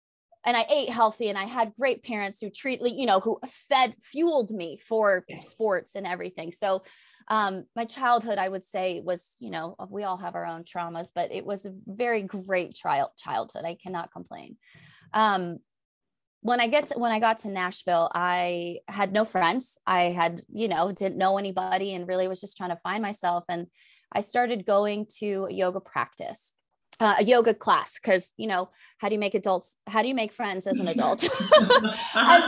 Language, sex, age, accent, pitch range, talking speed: English, female, 20-39, American, 185-245 Hz, 195 wpm